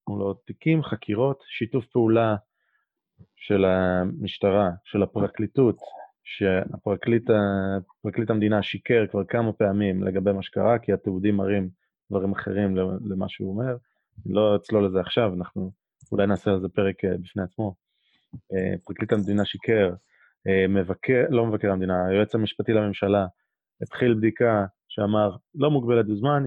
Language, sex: Hebrew, male